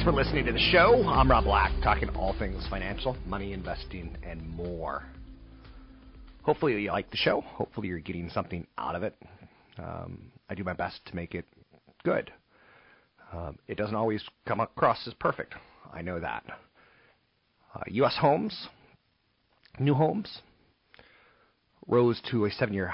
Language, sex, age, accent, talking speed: English, male, 40-59, American, 150 wpm